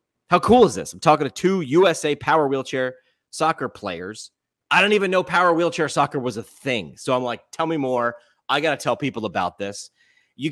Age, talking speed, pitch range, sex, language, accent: 30-49, 210 wpm, 120-160 Hz, male, English, American